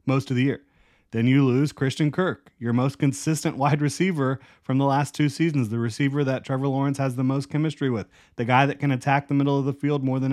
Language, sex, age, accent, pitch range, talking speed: English, male, 30-49, American, 115-140 Hz, 240 wpm